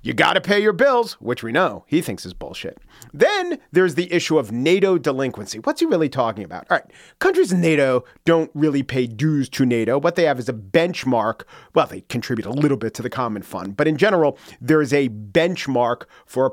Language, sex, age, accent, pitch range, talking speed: English, male, 40-59, American, 130-170 Hz, 220 wpm